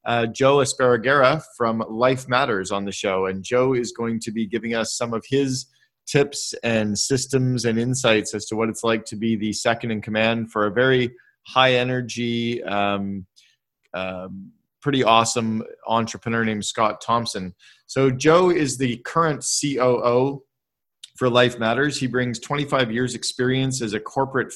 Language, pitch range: English, 115-130 Hz